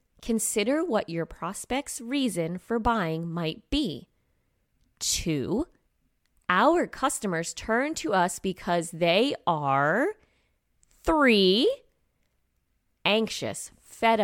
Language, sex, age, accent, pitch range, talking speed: English, female, 20-39, American, 170-250 Hz, 90 wpm